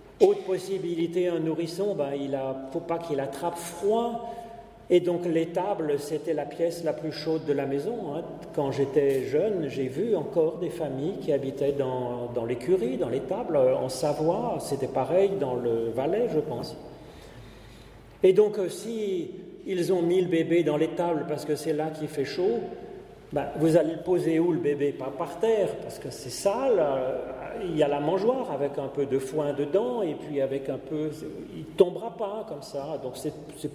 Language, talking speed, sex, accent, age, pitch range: French, 185 wpm, male, French, 40-59, 145-185 Hz